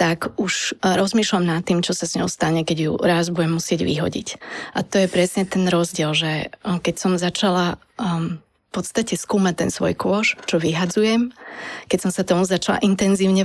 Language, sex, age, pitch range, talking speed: Slovak, female, 20-39, 170-200 Hz, 185 wpm